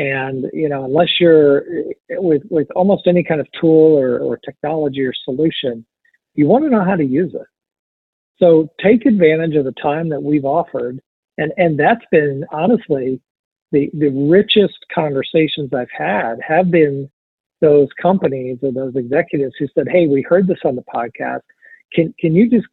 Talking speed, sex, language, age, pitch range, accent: 170 wpm, male, English, 50-69, 140-170 Hz, American